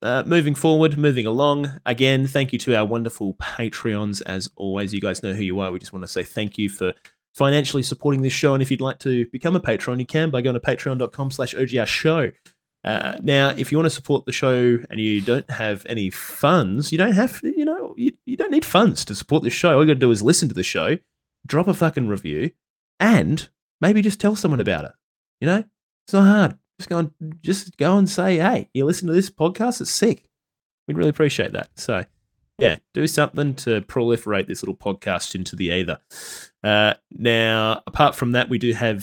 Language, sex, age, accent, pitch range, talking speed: English, male, 20-39, Australian, 105-155 Hz, 215 wpm